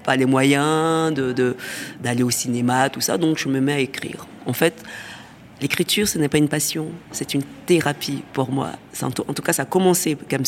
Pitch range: 130-160 Hz